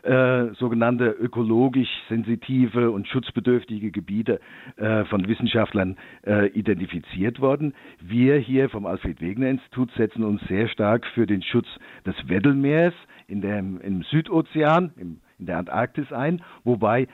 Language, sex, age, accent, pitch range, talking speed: German, male, 50-69, German, 105-135 Hz, 125 wpm